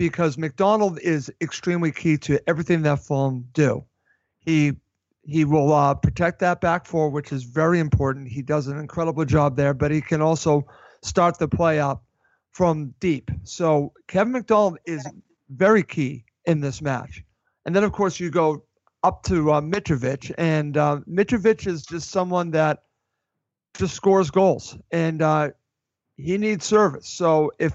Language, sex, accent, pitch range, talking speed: English, male, American, 150-185 Hz, 160 wpm